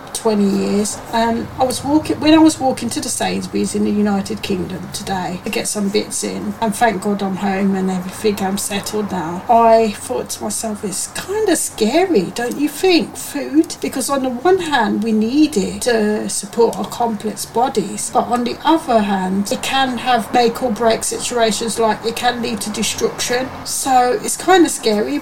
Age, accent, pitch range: 40-59, British, 195-235 Hz